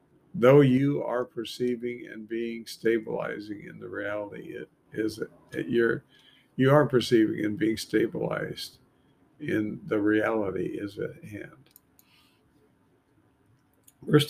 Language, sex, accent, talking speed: English, male, American, 115 wpm